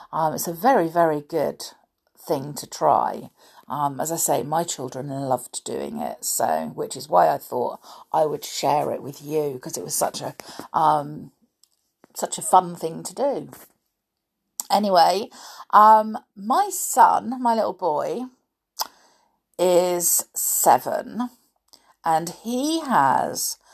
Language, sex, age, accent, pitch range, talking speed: English, female, 50-69, British, 160-240 Hz, 135 wpm